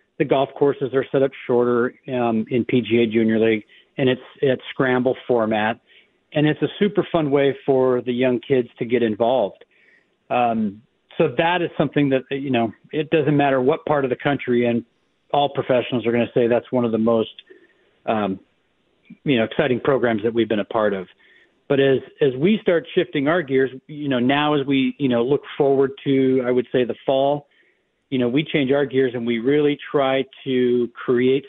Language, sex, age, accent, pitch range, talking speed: English, male, 40-59, American, 115-135 Hz, 200 wpm